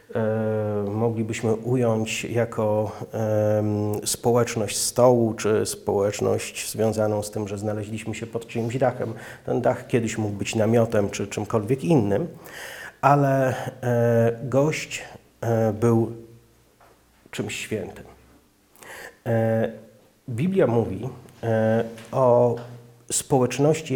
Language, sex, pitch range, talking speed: Polish, male, 110-125 Hz, 85 wpm